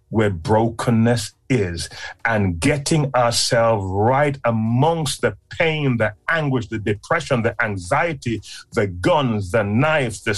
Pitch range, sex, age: 110-165 Hz, male, 30-49